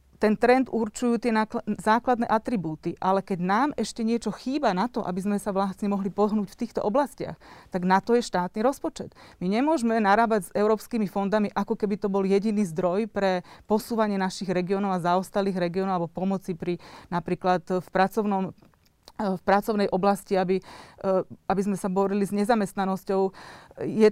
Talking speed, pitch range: 165 wpm, 190-220 Hz